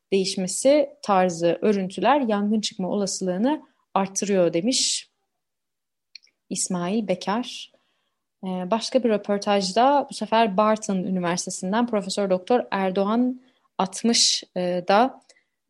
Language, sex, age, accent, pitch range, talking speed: Turkish, female, 30-49, native, 185-225 Hz, 80 wpm